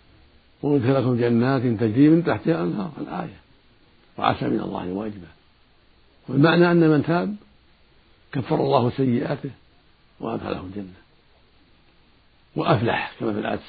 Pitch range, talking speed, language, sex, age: 100-140 Hz, 110 wpm, Arabic, male, 60-79